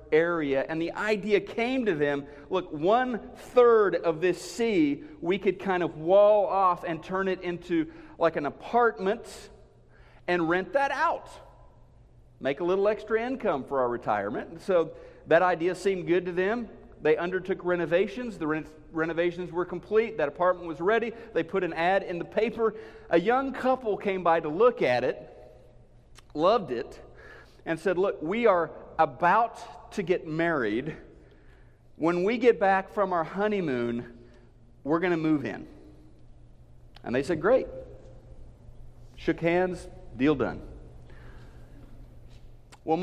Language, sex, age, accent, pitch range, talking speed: English, male, 50-69, American, 145-195 Hz, 145 wpm